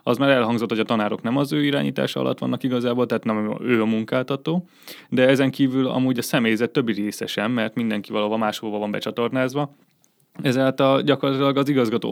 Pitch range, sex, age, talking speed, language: 110-130 Hz, male, 20-39, 190 wpm, Hungarian